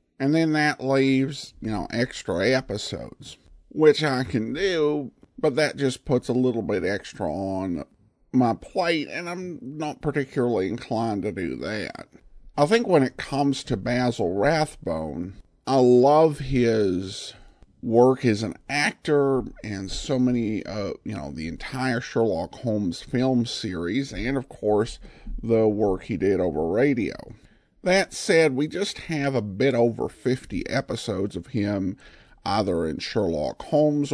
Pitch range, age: 110-140 Hz, 50-69